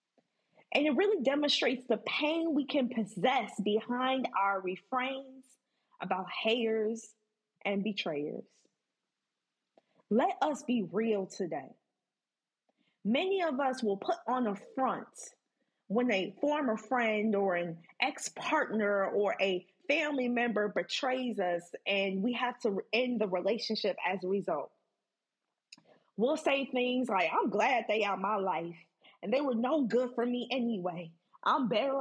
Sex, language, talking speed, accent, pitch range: female, English, 135 wpm, American, 210-280 Hz